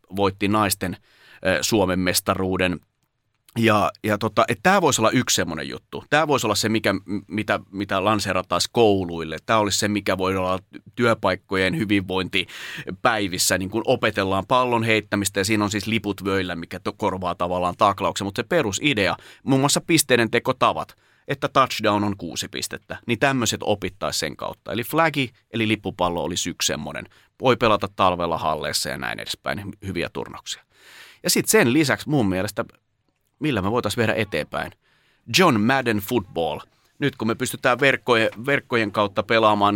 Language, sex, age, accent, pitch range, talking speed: Finnish, male, 30-49, native, 95-115 Hz, 150 wpm